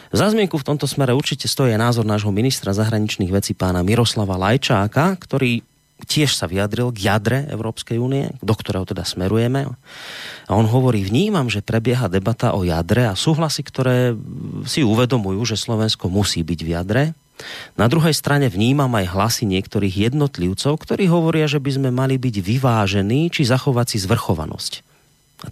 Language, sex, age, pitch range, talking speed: Slovak, male, 30-49, 105-140 Hz, 160 wpm